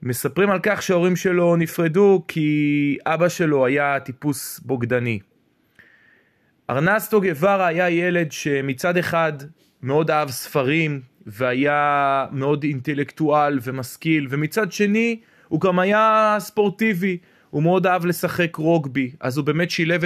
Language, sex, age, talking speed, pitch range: Hebrew, male, 20-39, 115 wpm, 145-185 Hz